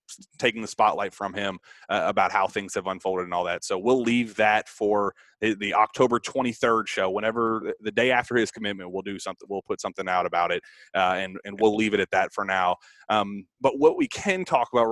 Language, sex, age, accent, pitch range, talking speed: English, male, 30-49, American, 100-120 Hz, 220 wpm